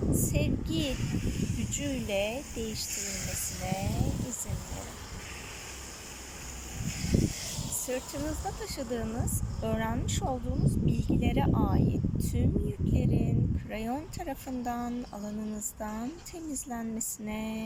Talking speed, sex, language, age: 60 wpm, female, Turkish, 30-49